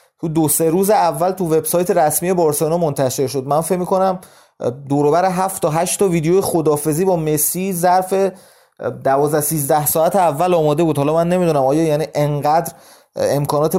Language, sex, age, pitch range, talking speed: Persian, male, 30-49, 145-170 Hz, 155 wpm